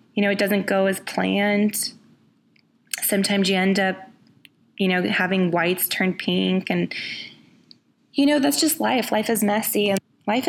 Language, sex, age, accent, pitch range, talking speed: English, female, 20-39, American, 195-260 Hz, 160 wpm